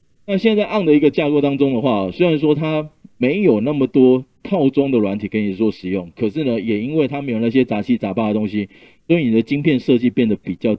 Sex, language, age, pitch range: male, Chinese, 30-49, 105-140 Hz